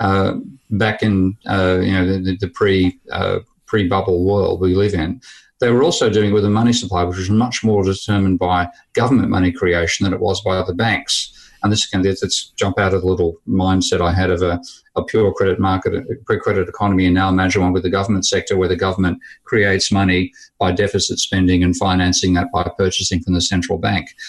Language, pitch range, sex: English, 90-105 Hz, male